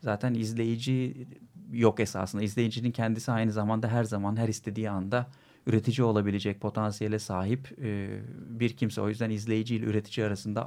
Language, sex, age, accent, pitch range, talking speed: Turkish, male, 40-59, native, 105-125 Hz, 140 wpm